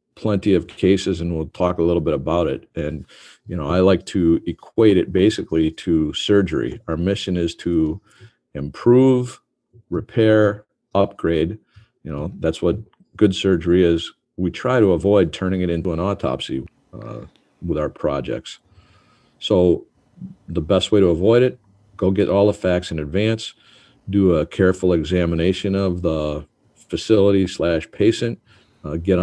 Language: English